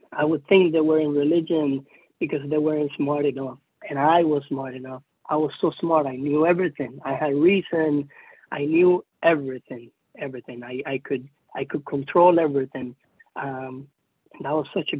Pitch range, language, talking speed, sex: 140-160 Hz, English, 175 wpm, male